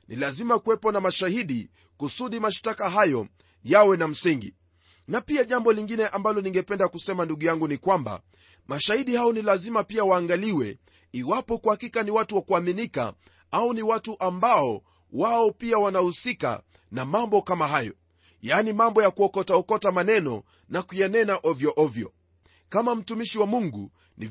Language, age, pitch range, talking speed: Swahili, 40-59, 150-225 Hz, 150 wpm